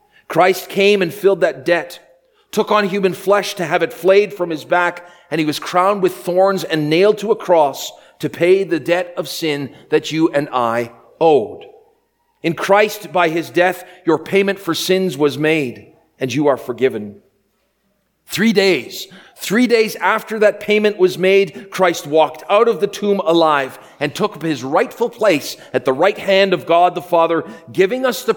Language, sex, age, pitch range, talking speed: English, male, 40-59, 155-205 Hz, 180 wpm